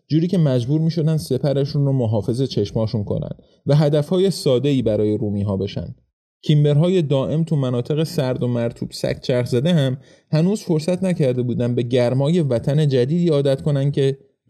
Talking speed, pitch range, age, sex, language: 160 wpm, 115-150 Hz, 30-49, male, Persian